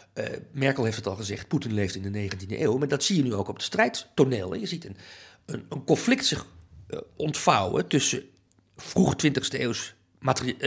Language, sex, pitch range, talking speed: Dutch, male, 115-150 Hz, 195 wpm